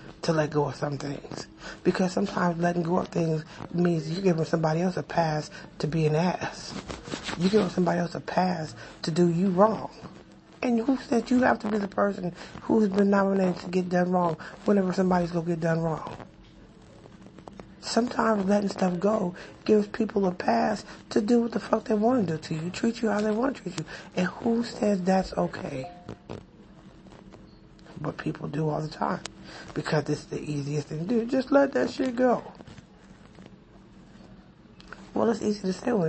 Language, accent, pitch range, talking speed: English, American, 165-215 Hz, 190 wpm